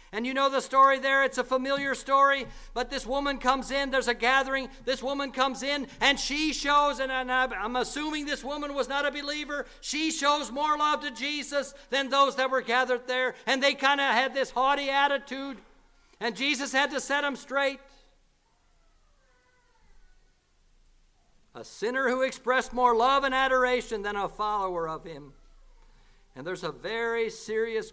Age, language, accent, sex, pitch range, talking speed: 60-79, English, American, male, 240-280 Hz, 170 wpm